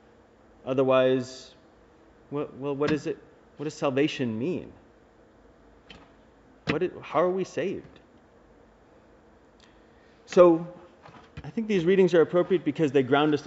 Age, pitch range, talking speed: 30-49, 120-155 Hz, 115 wpm